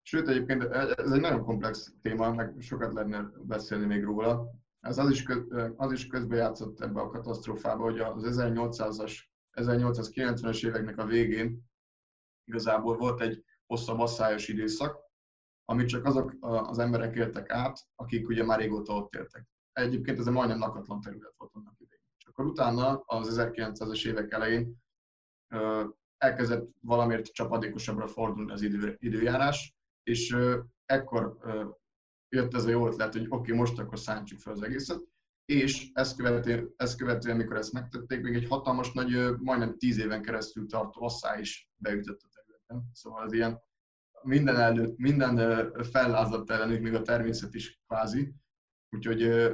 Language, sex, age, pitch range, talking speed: Hungarian, male, 20-39, 110-125 Hz, 145 wpm